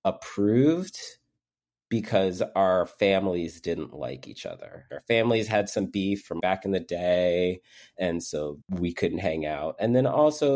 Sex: male